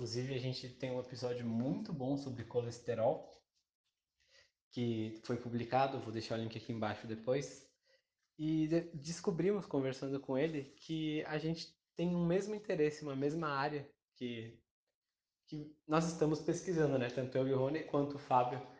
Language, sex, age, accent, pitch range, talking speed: Portuguese, male, 20-39, Brazilian, 125-160 Hz, 160 wpm